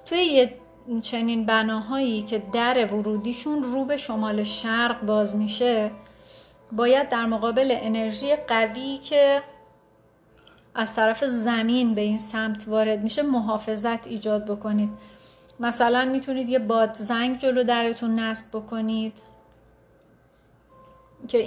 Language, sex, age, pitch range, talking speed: Persian, female, 30-49, 215-260 Hz, 105 wpm